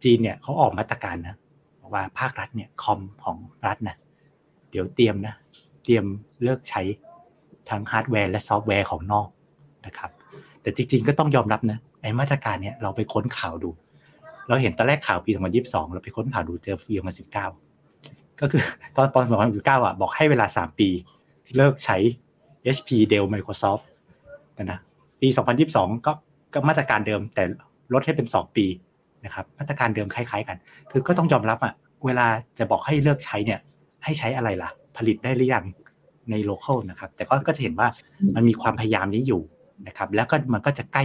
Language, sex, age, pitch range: Thai, male, 60-79, 100-135 Hz